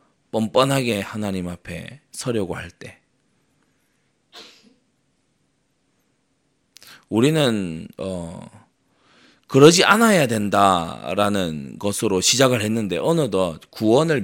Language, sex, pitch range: Korean, male, 90-125 Hz